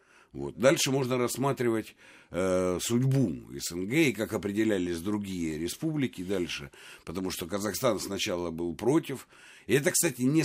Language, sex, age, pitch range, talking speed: Russian, male, 60-79, 105-155 Hz, 125 wpm